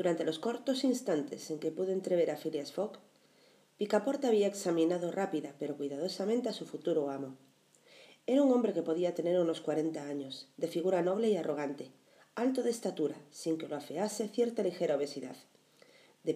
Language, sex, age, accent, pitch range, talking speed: Spanish, female, 40-59, Spanish, 160-210 Hz, 170 wpm